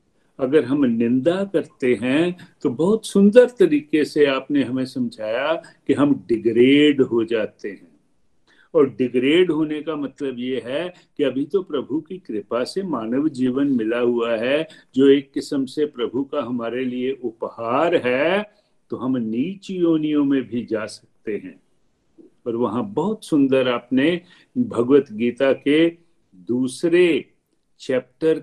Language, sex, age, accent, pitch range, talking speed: Hindi, male, 50-69, native, 125-170 Hz, 140 wpm